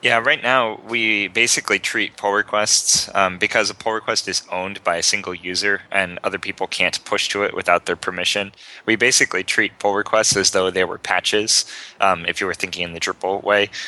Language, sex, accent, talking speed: English, male, American, 210 wpm